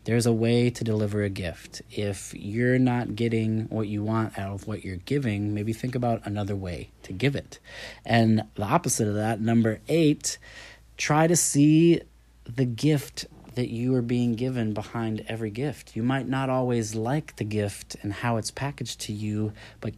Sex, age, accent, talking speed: male, 30-49, American, 185 wpm